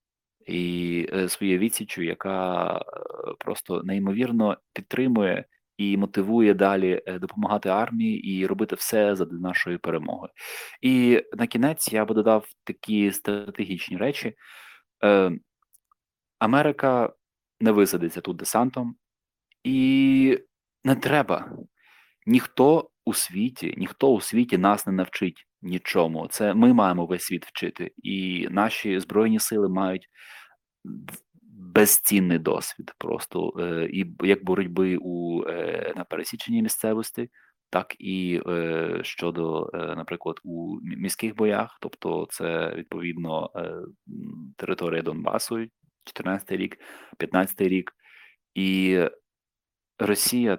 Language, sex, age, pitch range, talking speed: Ukrainian, male, 20-39, 90-115 Hz, 100 wpm